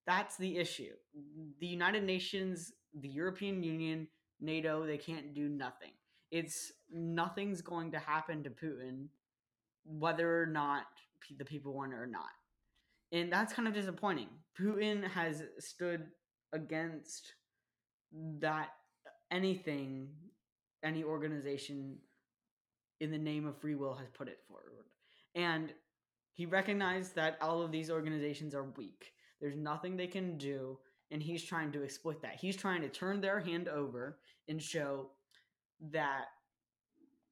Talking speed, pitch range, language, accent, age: 135 wpm, 145-180 Hz, English, American, 20-39